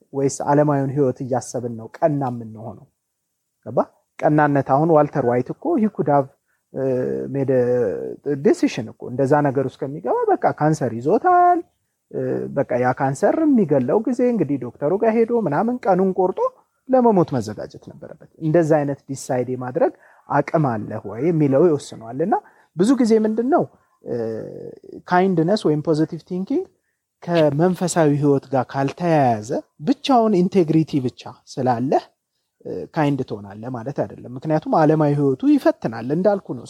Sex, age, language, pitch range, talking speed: male, 30-49, Amharic, 130-185 Hz, 115 wpm